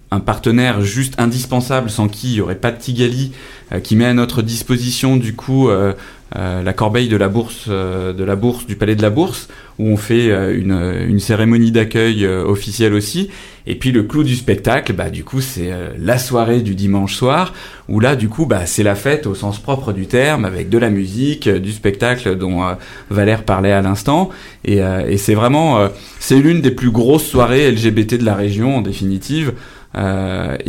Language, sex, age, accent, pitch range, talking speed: French, male, 20-39, French, 100-125 Hz, 210 wpm